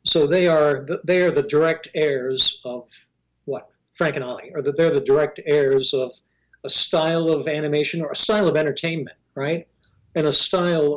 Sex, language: male, English